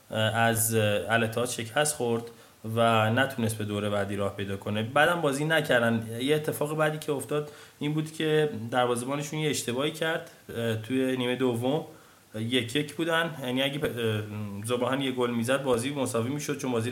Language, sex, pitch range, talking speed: Persian, male, 115-145 Hz, 160 wpm